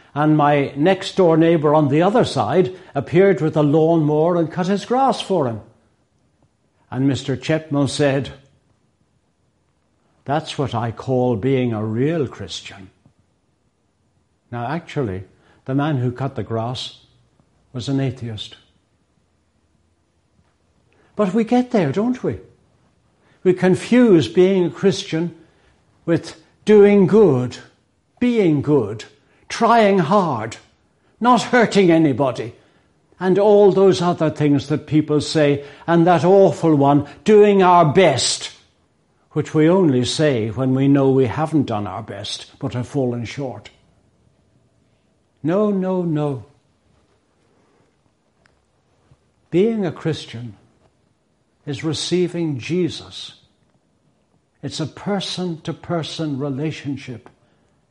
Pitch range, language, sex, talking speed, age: 120-170 Hz, English, male, 110 wpm, 60-79